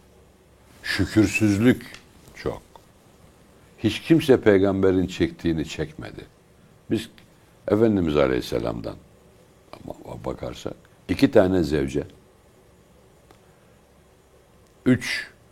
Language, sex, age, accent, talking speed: Turkish, male, 60-79, native, 60 wpm